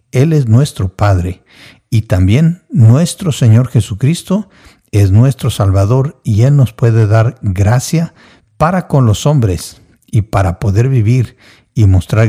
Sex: male